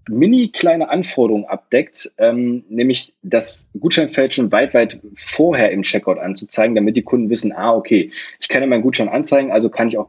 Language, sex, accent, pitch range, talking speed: German, male, German, 105-130 Hz, 180 wpm